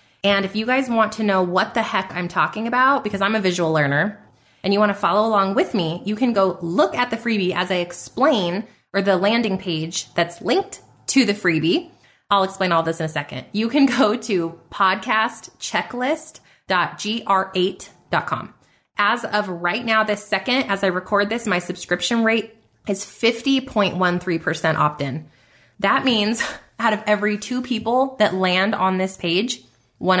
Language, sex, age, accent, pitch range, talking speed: English, female, 20-39, American, 180-230 Hz, 170 wpm